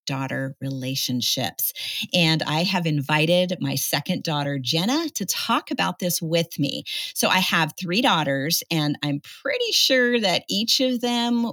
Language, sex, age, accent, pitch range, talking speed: English, female, 40-59, American, 155-245 Hz, 150 wpm